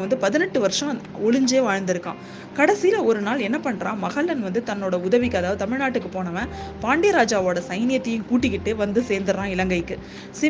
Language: Tamil